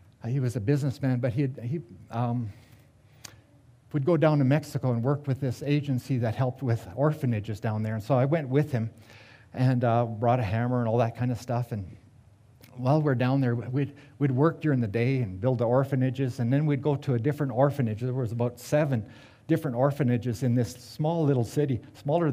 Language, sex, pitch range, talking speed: English, male, 115-140 Hz, 205 wpm